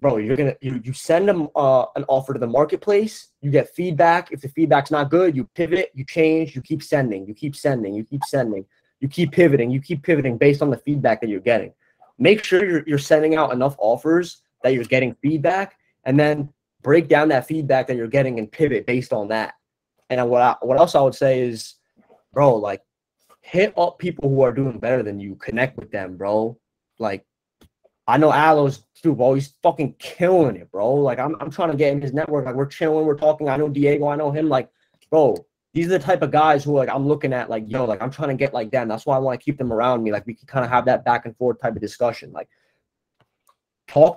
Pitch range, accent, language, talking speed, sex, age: 125-160 Hz, American, English, 240 wpm, male, 20-39